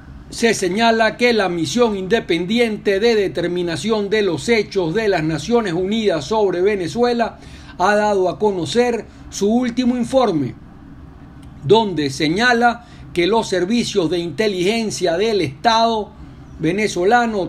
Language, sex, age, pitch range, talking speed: Spanish, male, 60-79, 175-235 Hz, 115 wpm